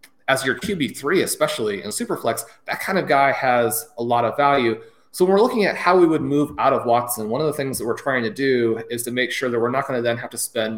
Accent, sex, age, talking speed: American, male, 30-49, 275 wpm